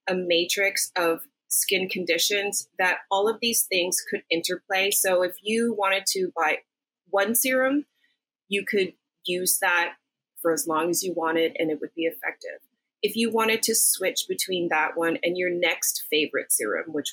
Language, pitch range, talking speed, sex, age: English, 165-220 Hz, 170 wpm, female, 30-49